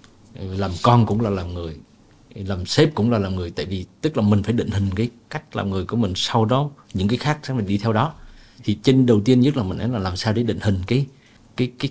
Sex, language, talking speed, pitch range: male, Vietnamese, 260 wpm, 105-130 Hz